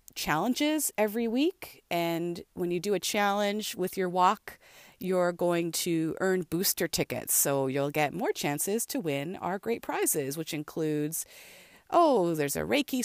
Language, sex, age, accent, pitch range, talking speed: English, female, 30-49, American, 160-220 Hz, 155 wpm